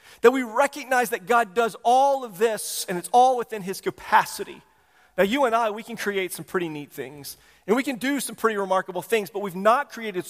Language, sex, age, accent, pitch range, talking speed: English, male, 40-59, American, 180-230 Hz, 220 wpm